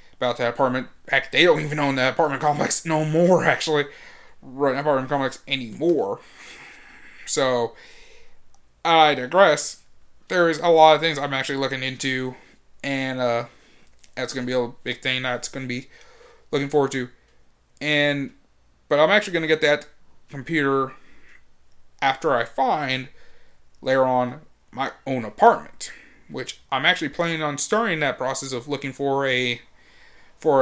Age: 20-39